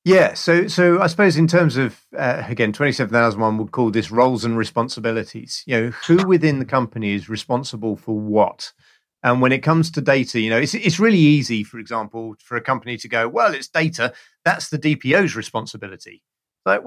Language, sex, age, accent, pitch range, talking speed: English, male, 40-59, British, 115-150 Hz, 195 wpm